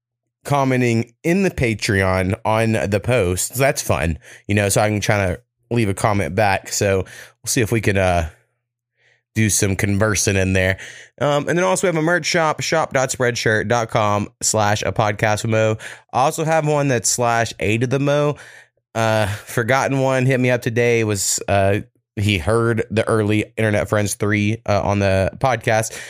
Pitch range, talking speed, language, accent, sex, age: 105-120 Hz, 175 wpm, English, American, male, 20-39